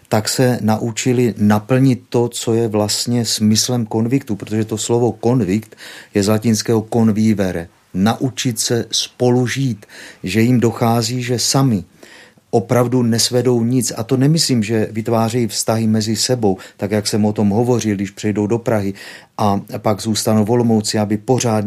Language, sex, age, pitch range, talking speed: Czech, male, 50-69, 105-120 Hz, 145 wpm